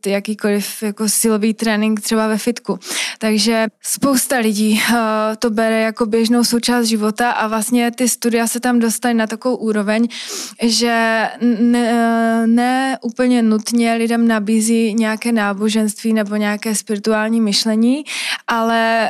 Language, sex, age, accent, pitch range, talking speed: Czech, female, 20-39, native, 215-235 Hz, 125 wpm